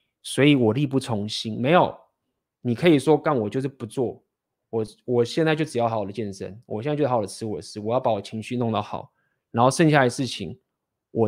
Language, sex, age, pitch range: Chinese, male, 20-39, 110-145 Hz